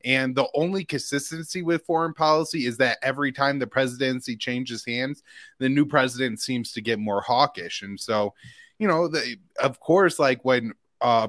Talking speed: 175 wpm